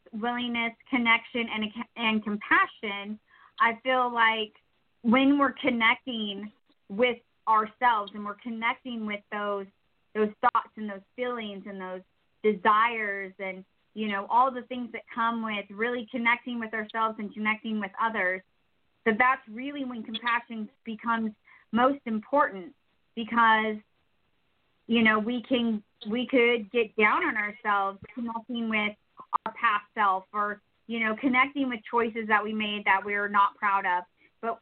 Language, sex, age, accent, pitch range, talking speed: English, female, 30-49, American, 210-245 Hz, 140 wpm